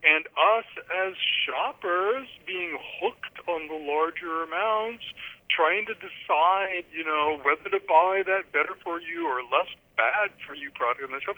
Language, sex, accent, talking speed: English, male, American, 165 wpm